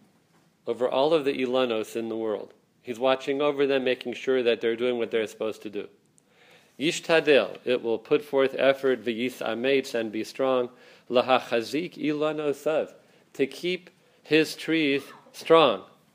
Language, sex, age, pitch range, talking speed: English, male, 40-59, 125-145 Hz, 150 wpm